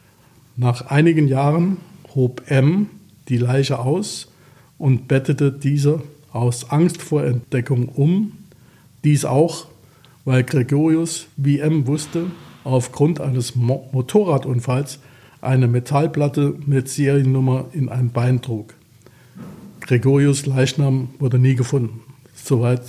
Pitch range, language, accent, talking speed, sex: 130-150 Hz, German, German, 105 wpm, male